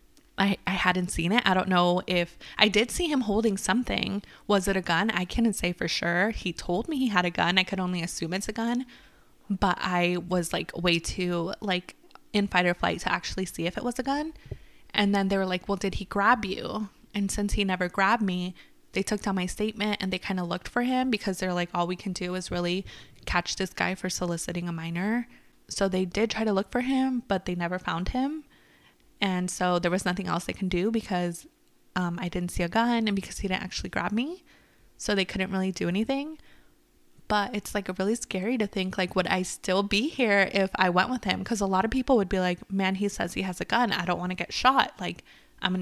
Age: 20-39